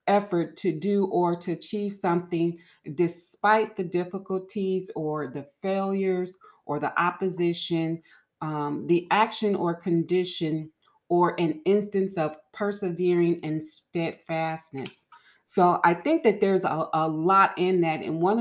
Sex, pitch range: female, 160-190 Hz